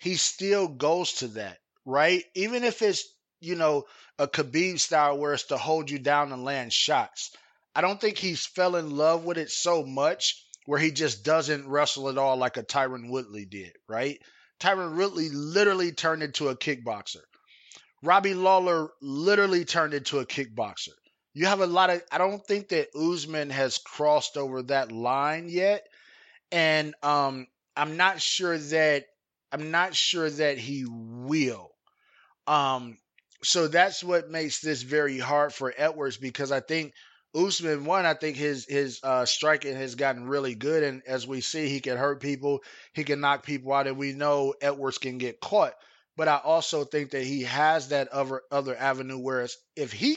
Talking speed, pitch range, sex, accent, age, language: 175 wpm, 135-170 Hz, male, American, 20-39, English